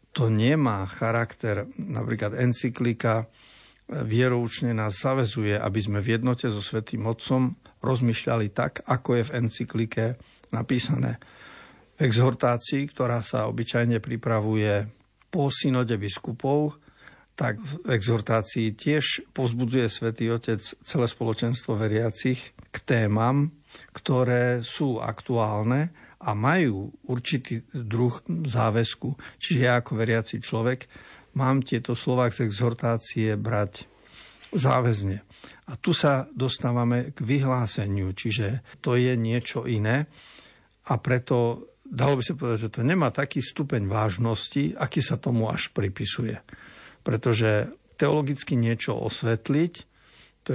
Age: 50-69